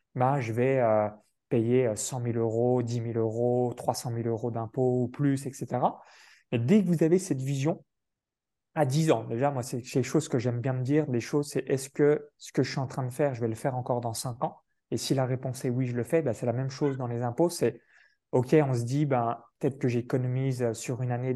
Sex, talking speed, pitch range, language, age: male, 250 wpm, 120-145 Hz, French, 20-39